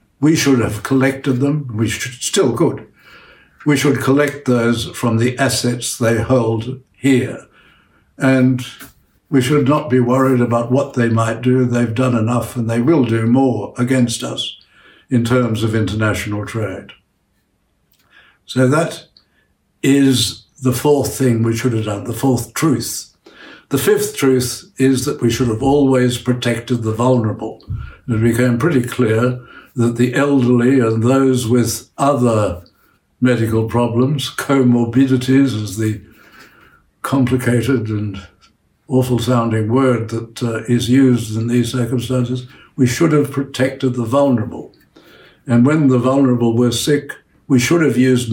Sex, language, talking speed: male, English, 140 wpm